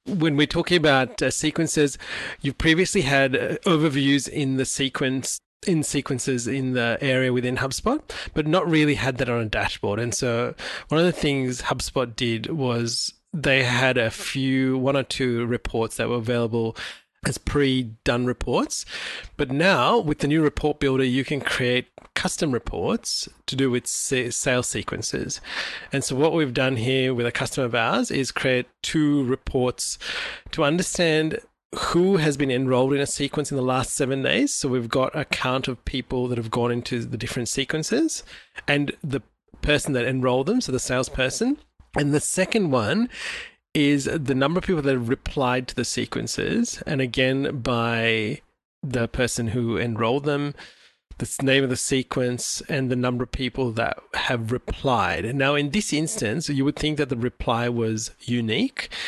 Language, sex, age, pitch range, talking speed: English, male, 30-49, 125-150 Hz, 170 wpm